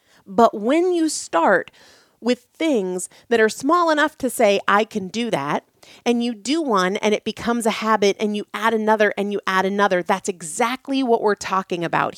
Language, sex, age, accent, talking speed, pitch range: English, female, 30-49, American, 190 wpm, 185-245 Hz